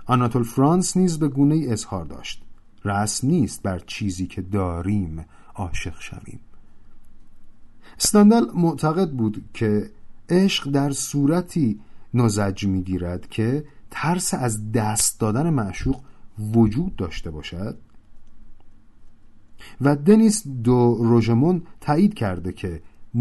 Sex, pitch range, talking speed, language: male, 105-150 Hz, 105 wpm, Persian